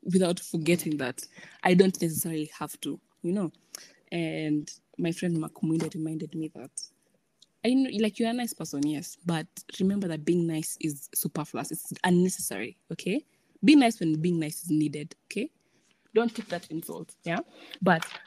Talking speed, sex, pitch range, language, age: 160 wpm, female, 155-185 Hz, English, 20-39